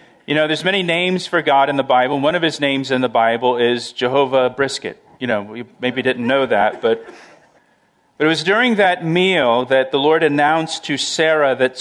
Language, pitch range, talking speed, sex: English, 135-170 Hz, 215 wpm, male